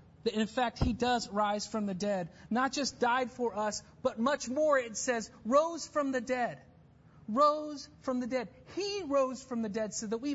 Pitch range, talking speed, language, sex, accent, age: 190-260 Hz, 205 wpm, English, male, American, 30-49